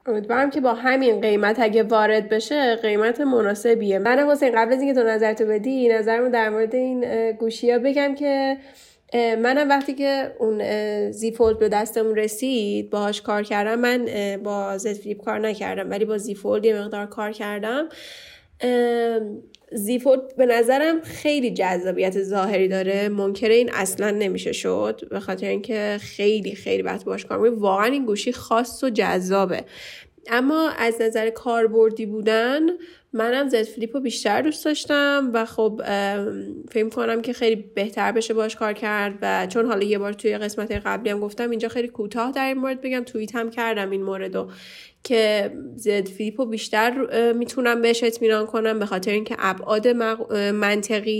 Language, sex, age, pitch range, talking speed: Persian, female, 10-29, 205-240 Hz, 150 wpm